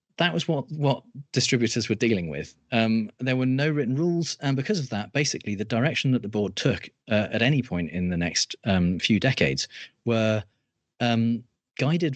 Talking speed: 190 wpm